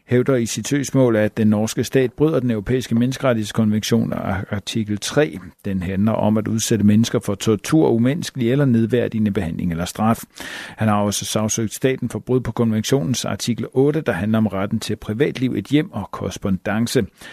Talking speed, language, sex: 175 wpm, Danish, male